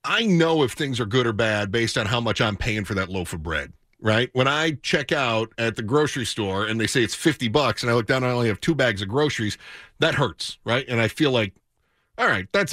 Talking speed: 265 wpm